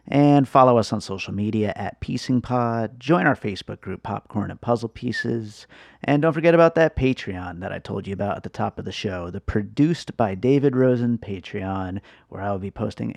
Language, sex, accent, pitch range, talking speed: English, male, American, 105-140 Hz, 195 wpm